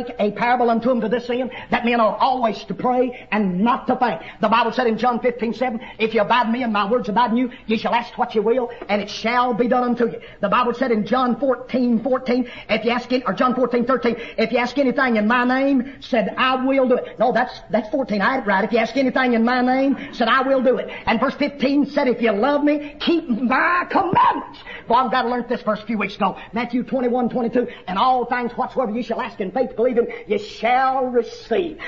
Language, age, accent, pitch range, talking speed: English, 50-69, American, 230-260 Hz, 250 wpm